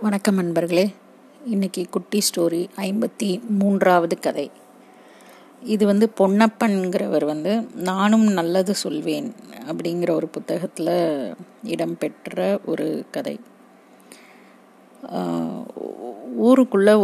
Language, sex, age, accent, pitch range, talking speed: Tamil, female, 30-49, native, 170-210 Hz, 75 wpm